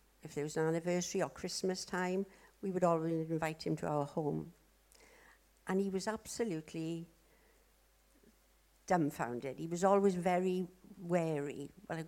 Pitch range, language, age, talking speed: 170-200 Hz, English, 60-79, 135 wpm